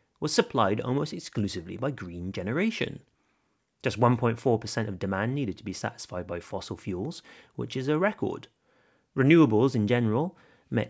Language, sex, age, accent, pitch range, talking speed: English, male, 30-49, British, 100-145 Hz, 145 wpm